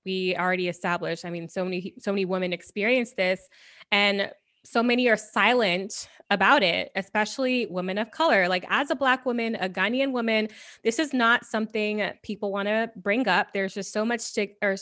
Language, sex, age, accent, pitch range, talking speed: English, female, 20-39, American, 195-235 Hz, 185 wpm